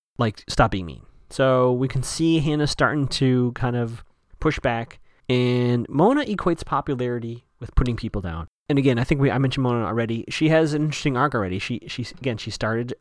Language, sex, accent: English, male, American